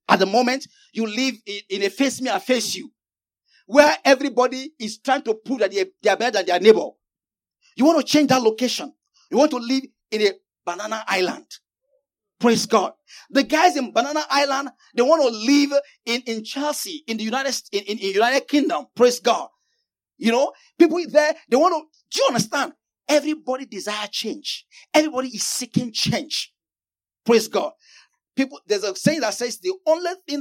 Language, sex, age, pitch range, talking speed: English, male, 40-59, 235-315 Hz, 180 wpm